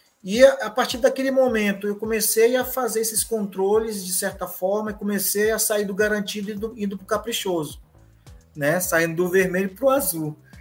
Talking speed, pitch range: 175 wpm, 165-215 Hz